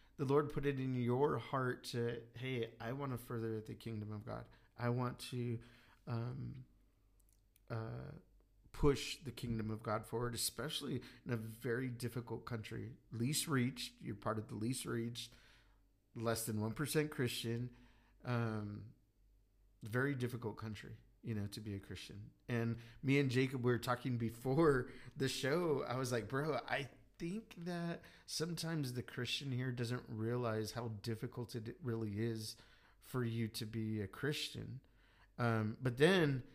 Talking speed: 155 wpm